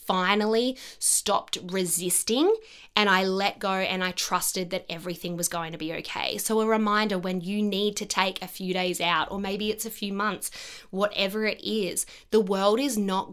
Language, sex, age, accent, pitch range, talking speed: English, female, 20-39, Australian, 180-215 Hz, 190 wpm